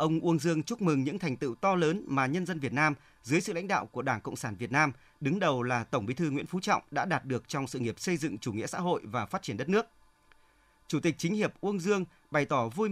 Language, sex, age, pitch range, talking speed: Vietnamese, male, 30-49, 140-185 Hz, 280 wpm